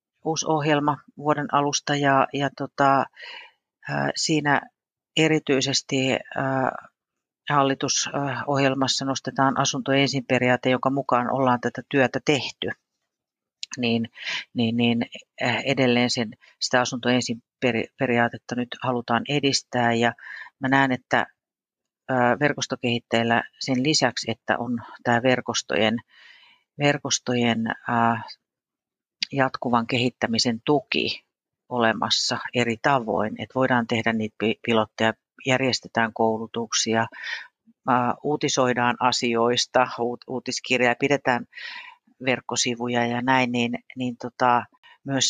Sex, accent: female, native